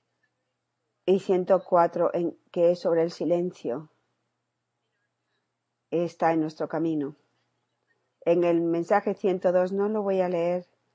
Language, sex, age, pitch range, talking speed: Spanish, female, 40-59, 155-185 Hz, 115 wpm